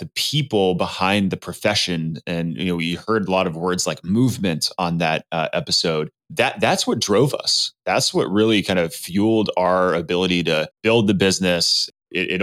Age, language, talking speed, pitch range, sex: 20-39, English, 190 wpm, 85-100 Hz, male